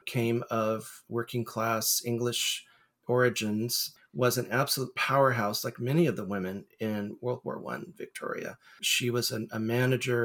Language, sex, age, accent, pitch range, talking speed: English, male, 40-59, American, 115-125 Hz, 145 wpm